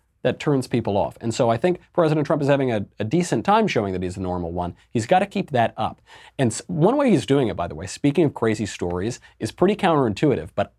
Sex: male